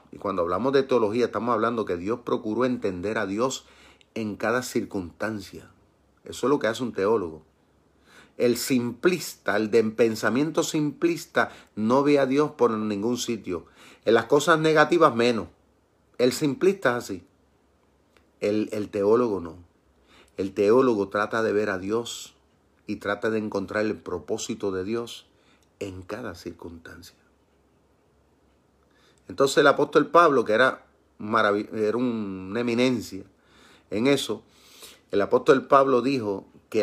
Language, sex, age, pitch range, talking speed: Spanish, male, 40-59, 95-135 Hz, 140 wpm